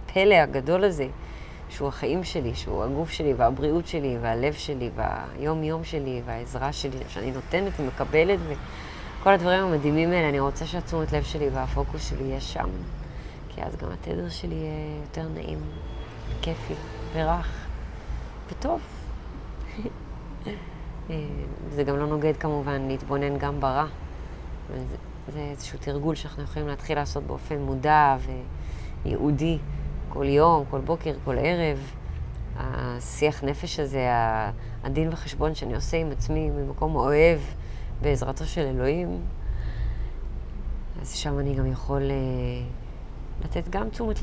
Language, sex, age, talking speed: Hebrew, female, 30-49, 125 wpm